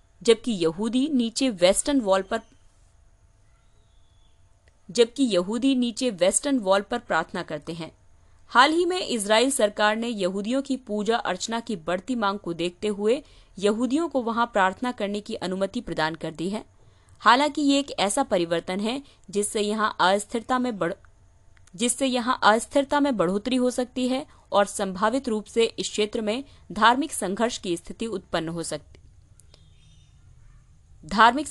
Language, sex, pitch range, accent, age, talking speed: Hindi, female, 165-240 Hz, native, 30-49, 135 wpm